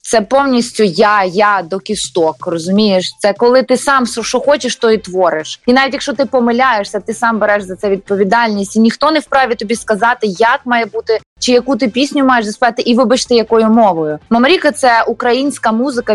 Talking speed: 185 wpm